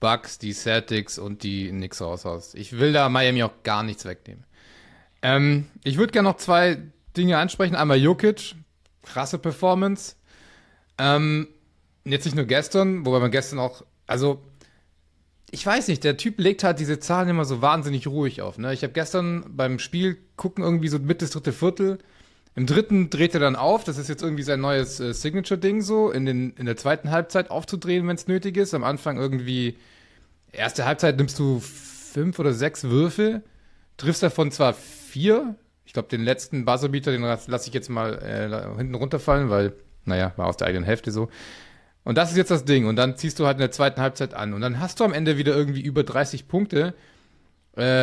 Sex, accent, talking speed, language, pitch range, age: male, German, 190 wpm, German, 120-165 Hz, 30-49